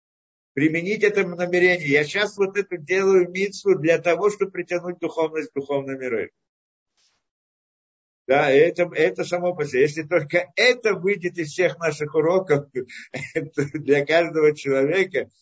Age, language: 50-69, Russian